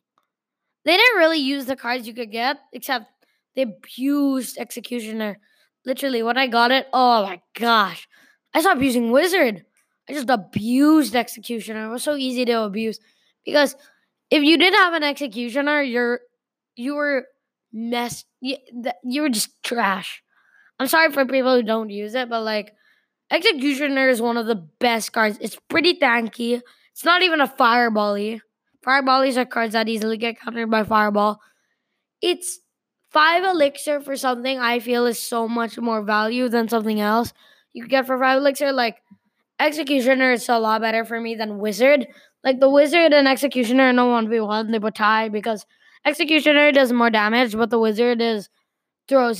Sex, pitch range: female, 230-280 Hz